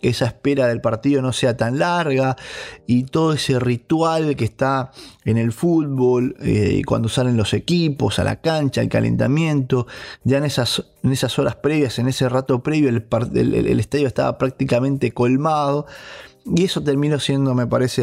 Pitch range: 115-140 Hz